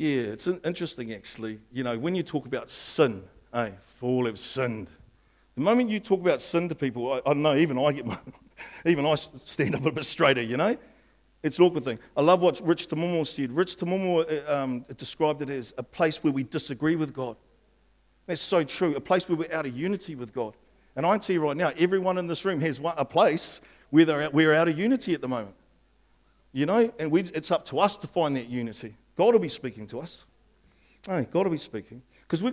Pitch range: 130-195 Hz